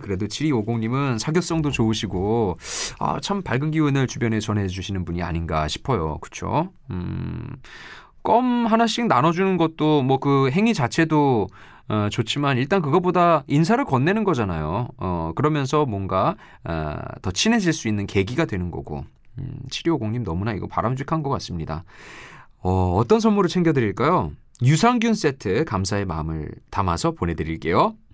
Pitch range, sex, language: 100-165 Hz, male, Korean